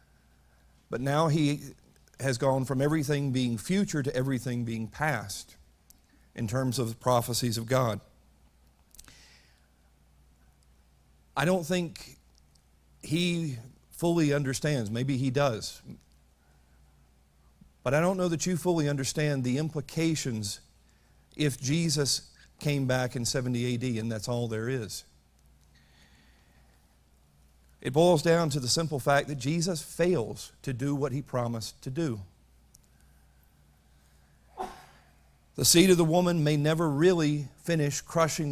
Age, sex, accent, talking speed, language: 50-69, male, American, 120 wpm, English